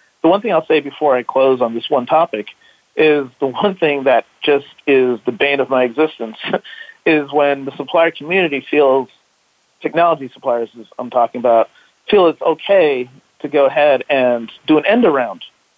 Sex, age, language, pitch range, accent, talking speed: male, 40-59, English, 130-155 Hz, American, 175 wpm